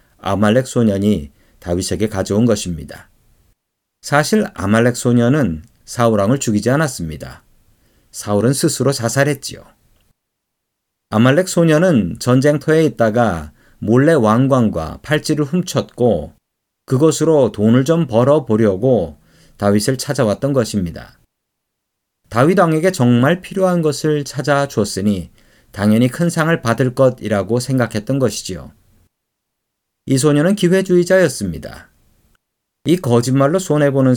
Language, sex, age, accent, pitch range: Korean, male, 40-59, native, 105-145 Hz